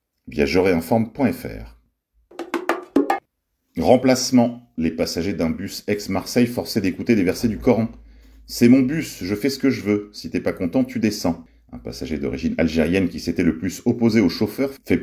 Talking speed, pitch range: 175 wpm, 85-120 Hz